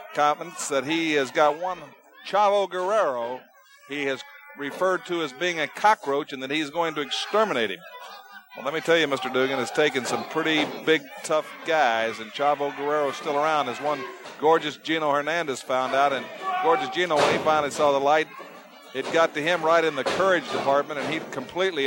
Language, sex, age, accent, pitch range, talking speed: English, male, 50-69, American, 135-165 Hz, 195 wpm